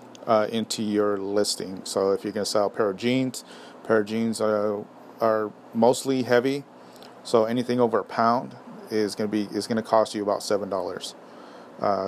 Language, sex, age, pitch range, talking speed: English, male, 30-49, 105-120 Hz, 185 wpm